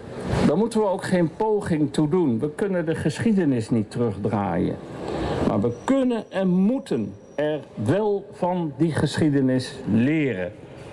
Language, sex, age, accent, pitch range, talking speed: Dutch, male, 60-79, Dutch, 130-175 Hz, 135 wpm